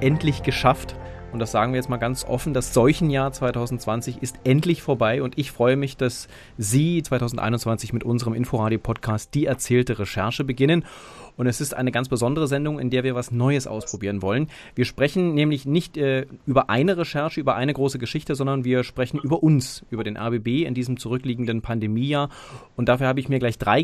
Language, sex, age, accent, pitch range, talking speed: German, male, 30-49, German, 115-140 Hz, 190 wpm